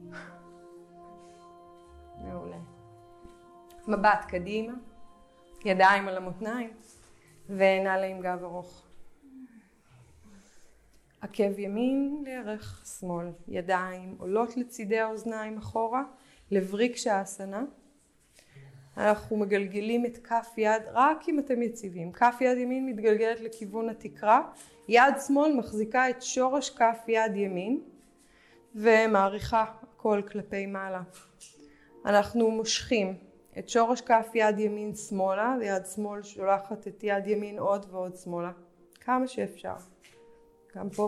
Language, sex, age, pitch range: Hebrew, female, 20-39, 190-245 Hz